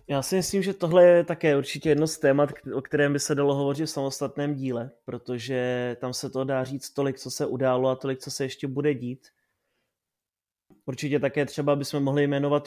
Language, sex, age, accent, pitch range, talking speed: Czech, male, 20-39, native, 130-145 Hz, 205 wpm